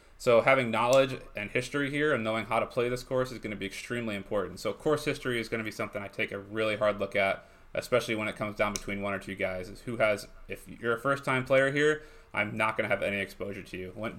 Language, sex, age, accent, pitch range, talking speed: English, male, 20-39, American, 100-120 Hz, 260 wpm